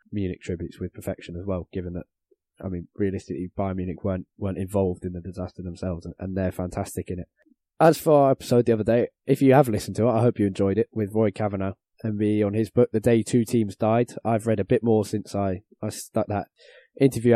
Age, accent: 20-39, British